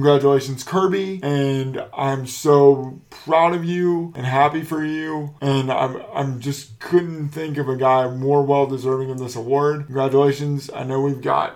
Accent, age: American, 20-39